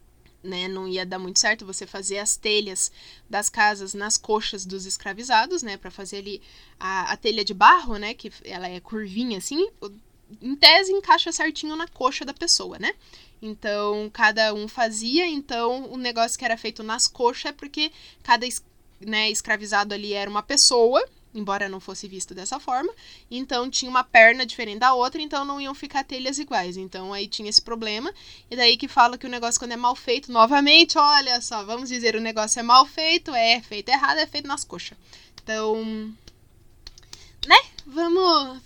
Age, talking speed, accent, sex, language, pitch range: 10-29, 180 wpm, Brazilian, female, Portuguese, 215-300 Hz